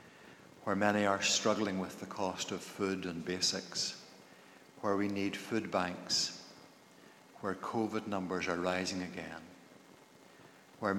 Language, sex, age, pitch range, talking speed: English, male, 60-79, 90-105 Hz, 125 wpm